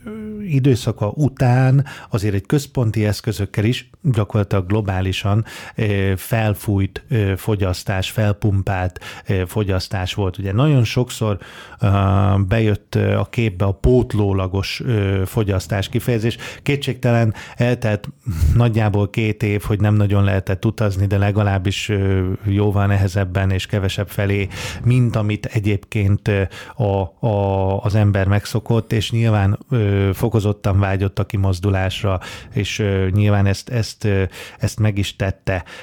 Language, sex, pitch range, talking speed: Hungarian, male, 100-120 Hz, 100 wpm